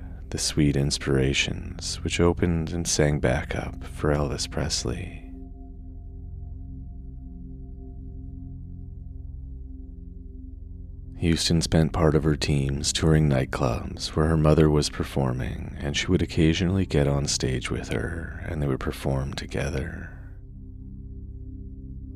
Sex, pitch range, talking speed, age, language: male, 65-85 Hz, 105 wpm, 30-49, English